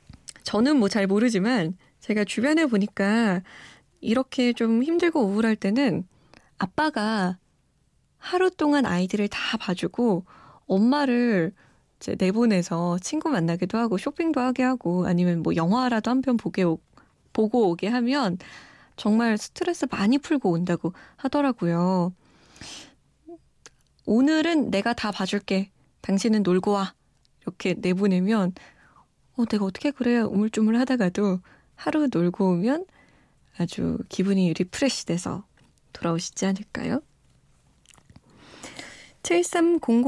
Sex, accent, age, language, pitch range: female, native, 20-39, Korean, 185-250 Hz